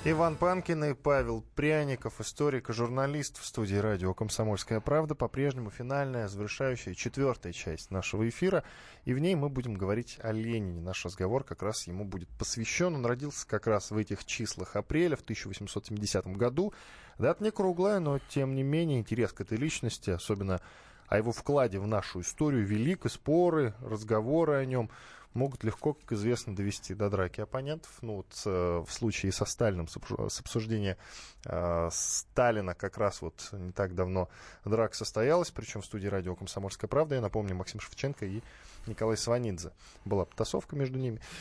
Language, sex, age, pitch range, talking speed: Russian, male, 20-39, 100-130 Hz, 165 wpm